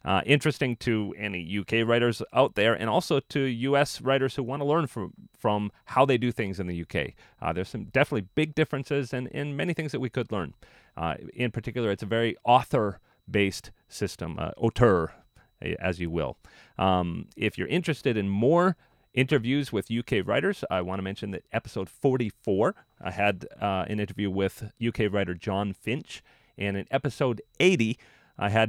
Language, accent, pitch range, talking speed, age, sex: English, American, 105-140 Hz, 180 wpm, 40-59, male